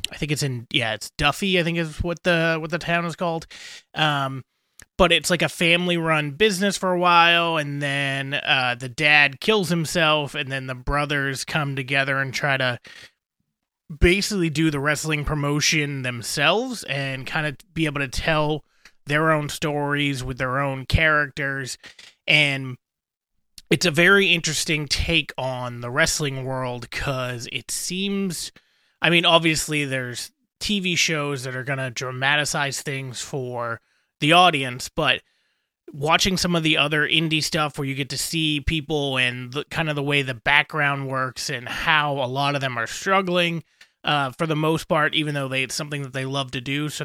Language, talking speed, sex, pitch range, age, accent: English, 175 wpm, male, 135-160 Hz, 30-49, American